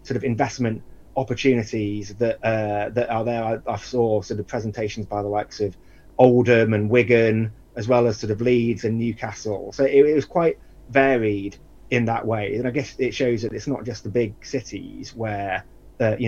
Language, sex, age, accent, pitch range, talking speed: English, male, 30-49, British, 105-125 Hz, 200 wpm